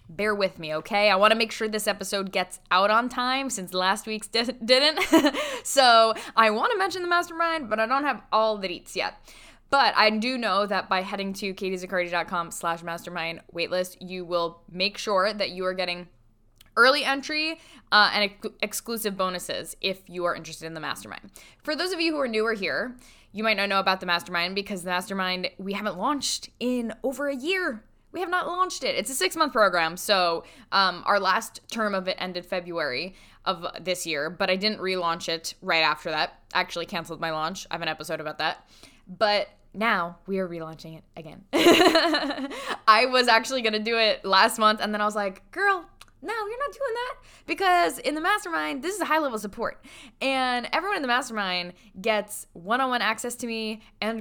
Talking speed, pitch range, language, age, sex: 200 wpm, 185-250 Hz, English, 10-29, female